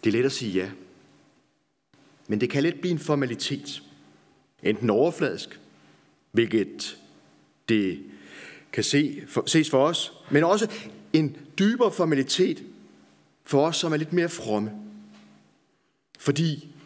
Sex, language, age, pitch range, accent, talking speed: male, Danish, 30-49, 115-170 Hz, native, 130 wpm